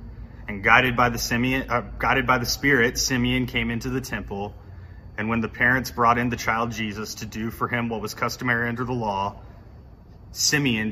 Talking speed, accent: 170 wpm, American